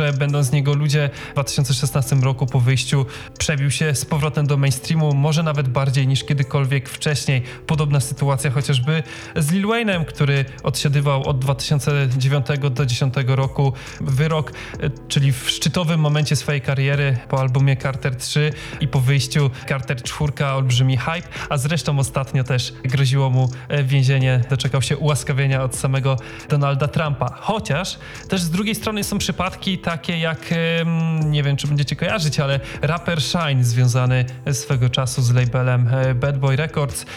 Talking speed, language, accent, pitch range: 150 wpm, Polish, native, 135-150 Hz